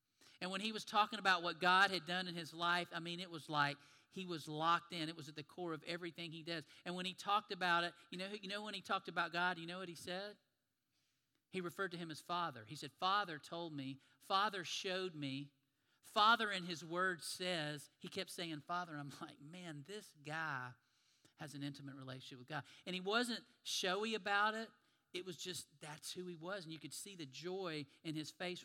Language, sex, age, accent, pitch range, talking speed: English, male, 50-69, American, 145-180 Hz, 225 wpm